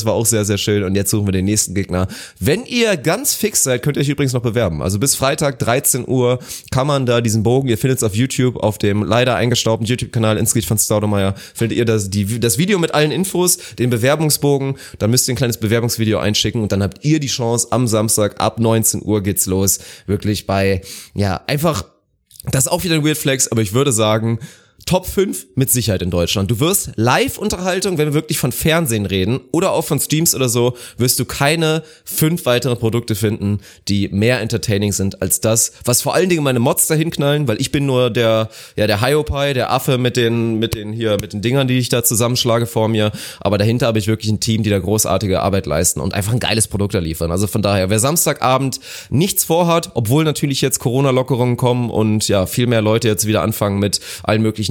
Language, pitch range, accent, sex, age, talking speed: German, 105-135 Hz, German, male, 20-39, 220 wpm